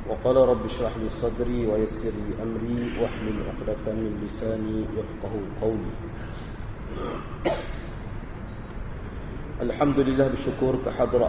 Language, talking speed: Malay, 100 wpm